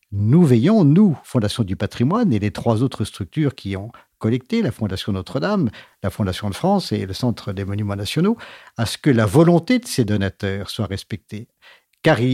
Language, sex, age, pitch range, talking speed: French, male, 50-69, 105-145 Hz, 185 wpm